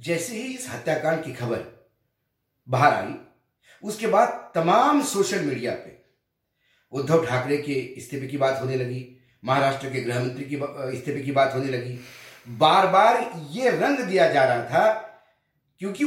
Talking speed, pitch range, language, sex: 150 wpm, 125-165 Hz, Hindi, male